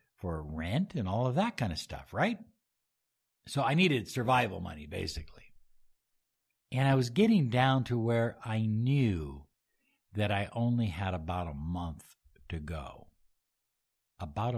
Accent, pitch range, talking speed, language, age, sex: American, 75-120 Hz, 145 wpm, English, 60-79, male